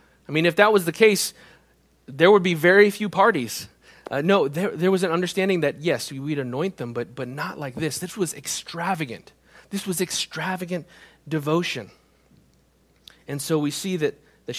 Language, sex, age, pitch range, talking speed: English, male, 30-49, 140-195 Hz, 175 wpm